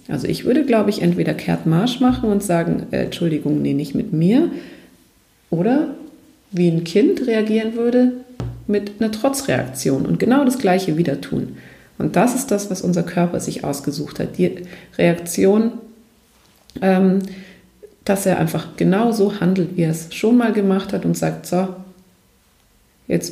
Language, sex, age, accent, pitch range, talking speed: German, female, 40-59, German, 180-235 Hz, 160 wpm